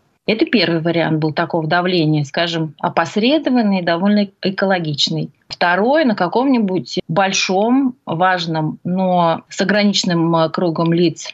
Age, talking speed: 30-49, 105 wpm